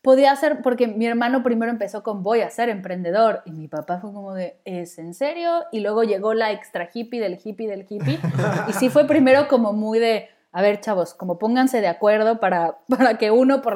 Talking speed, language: 220 wpm, Spanish